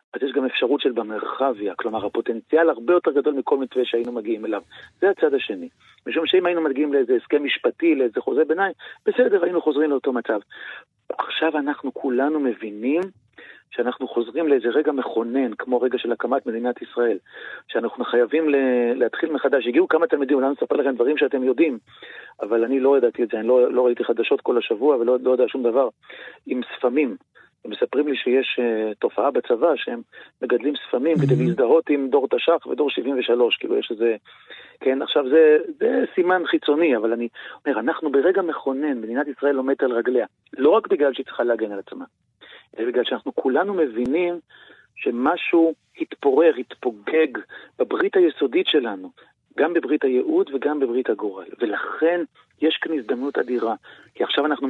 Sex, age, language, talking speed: male, 40-59, Hebrew, 165 wpm